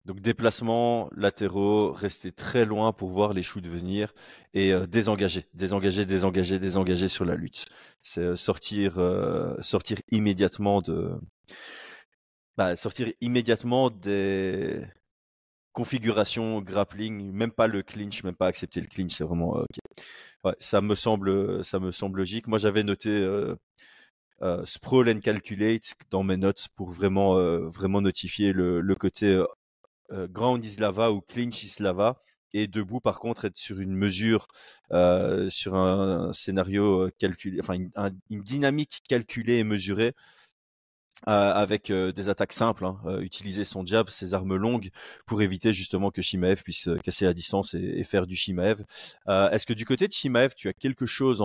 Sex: male